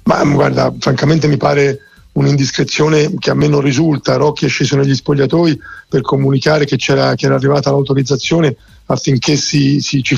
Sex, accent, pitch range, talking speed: male, native, 135-150 Hz, 145 wpm